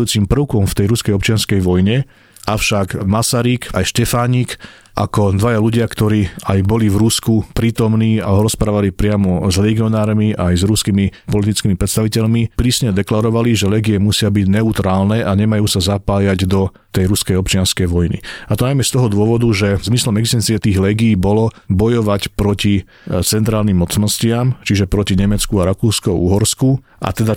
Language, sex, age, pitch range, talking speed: Slovak, male, 40-59, 100-110 Hz, 150 wpm